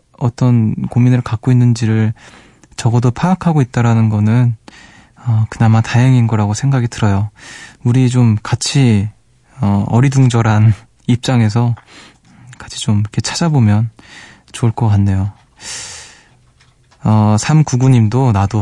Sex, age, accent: male, 20-39, native